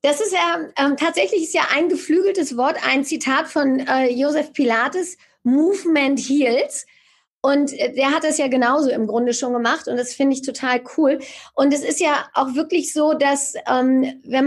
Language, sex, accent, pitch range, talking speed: German, female, German, 260-315 Hz, 185 wpm